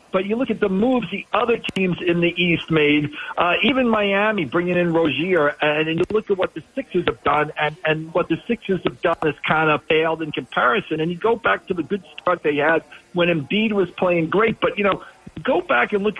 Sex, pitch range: male, 150-190 Hz